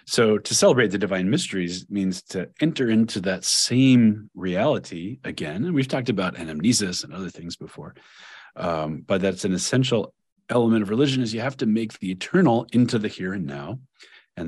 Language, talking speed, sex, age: English, 180 wpm, male, 40-59